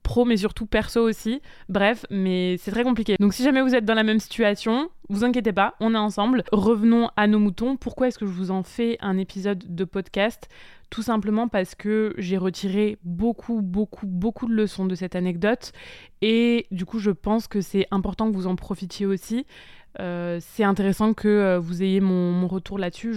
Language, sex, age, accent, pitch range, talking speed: French, female, 20-39, French, 190-230 Hz, 200 wpm